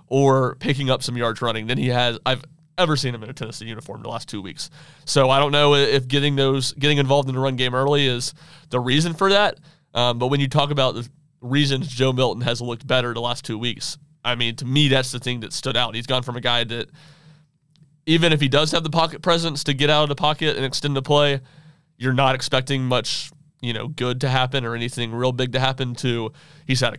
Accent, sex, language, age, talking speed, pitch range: American, male, English, 30-49, 240 wpm, 120-145 Hz